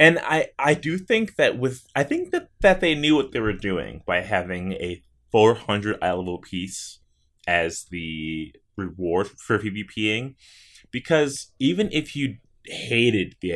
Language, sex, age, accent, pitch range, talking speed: English, male, 20-39, American, 95-135 Hz, 155 wpm